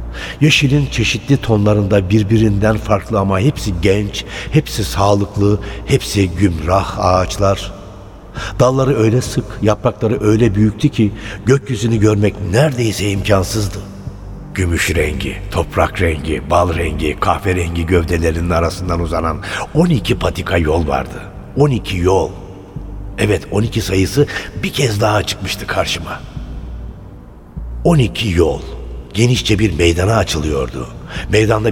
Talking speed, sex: 105 wpm, male